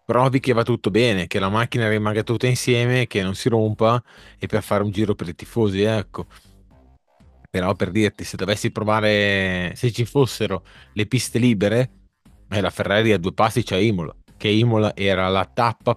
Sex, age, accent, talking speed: male, 30-49, native, 185 wpm